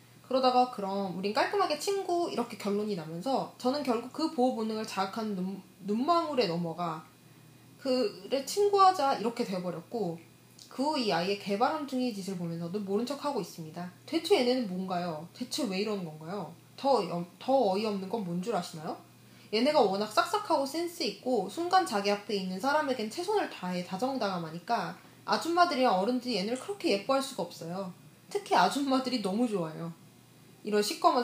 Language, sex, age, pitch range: Korean, female, 20-39, 190-270 Hz